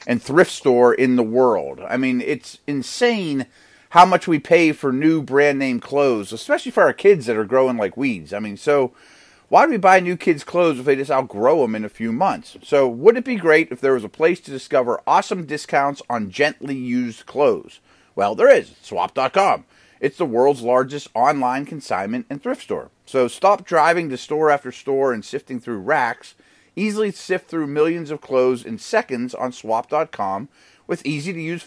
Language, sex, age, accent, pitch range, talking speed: English, male, 30-49, American, 125-175 Hz, 190 wpm